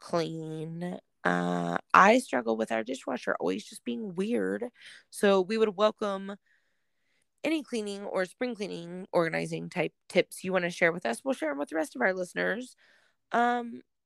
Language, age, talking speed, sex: English, 20-39, 165 wpm, female